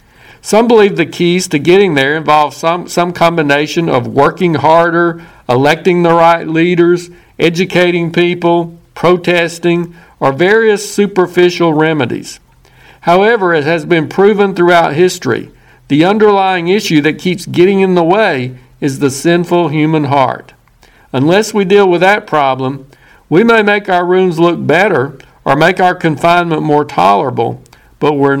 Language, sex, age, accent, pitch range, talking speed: English, male, 50-69, American, 140-175 Hz, 140 wpm